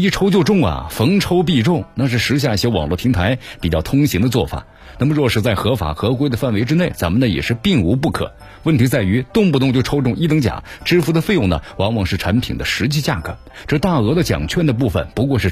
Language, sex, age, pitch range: Chinese, male, 50-69, 100-140 Hz